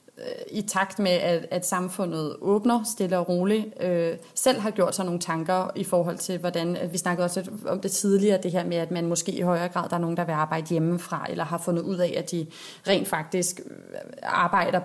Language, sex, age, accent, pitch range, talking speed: Danish, female, 30-49, native, 175-195 Hz, 220 wpm